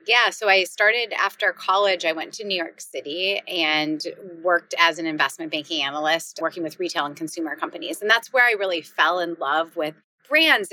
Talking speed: 195 wpm